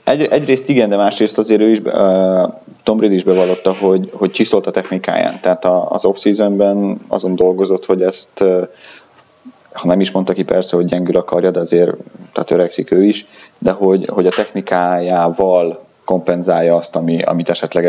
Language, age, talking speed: Hungarian, 30-49, 175 wpm